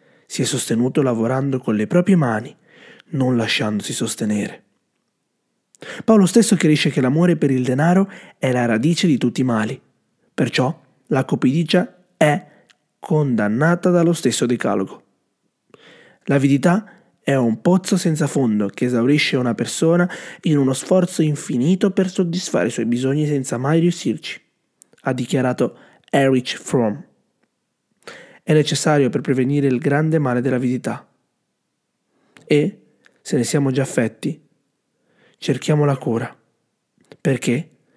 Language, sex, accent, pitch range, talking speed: Italian, male, native, 120-165 Hz, 125 wpm